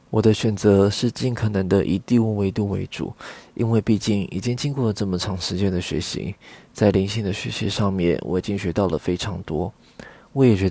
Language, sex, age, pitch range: Chinese, male, 20-39, 95-110 Hz